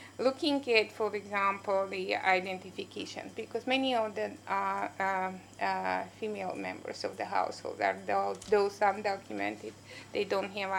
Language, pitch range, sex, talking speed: English, 180-220 Hz, female, 115 wpm